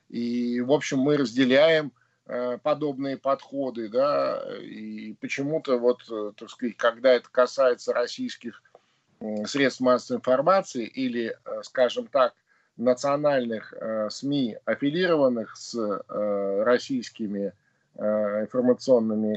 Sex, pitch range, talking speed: male, 115-155 Hz, 110 wpm